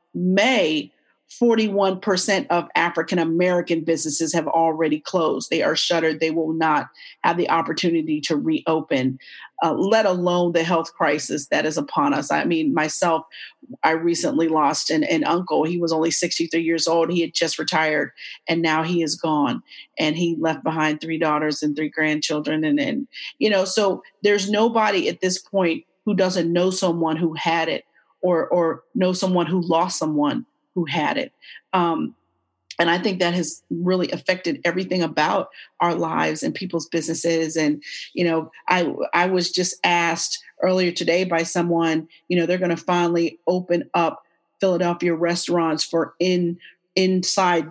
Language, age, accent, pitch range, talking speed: English, 40-59, American, 160-185 Hz, 160 wpm